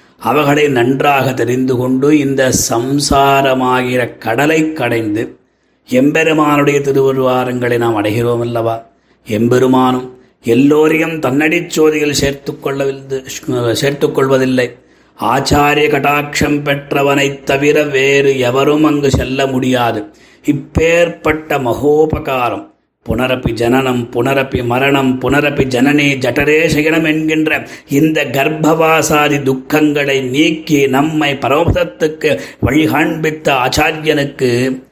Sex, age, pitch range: male, 30-49, 130-150 Hz